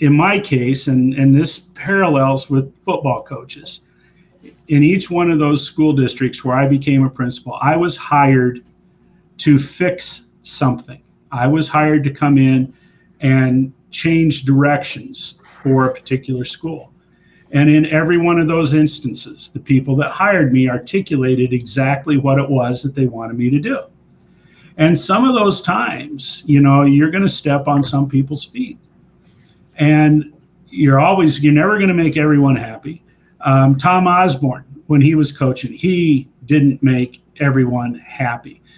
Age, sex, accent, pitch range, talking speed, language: 50-69, male, American, 135-160 Hz, 150 wpm, English